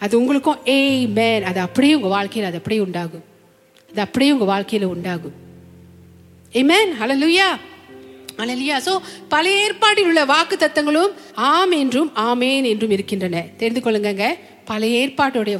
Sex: female